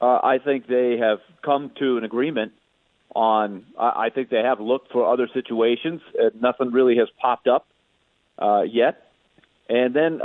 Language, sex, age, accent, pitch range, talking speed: English, male, 40-59, American, 120-140 Hz, 165 wpm